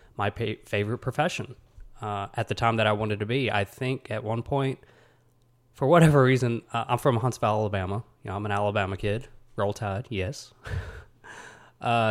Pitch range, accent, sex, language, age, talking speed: 105-130 Hz, American, male, English, 20-39, 175 wpm